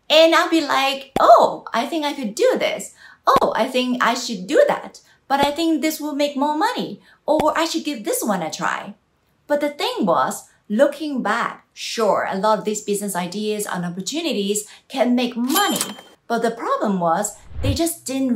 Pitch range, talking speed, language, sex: 190-260 Hz, 195 wpm, English, female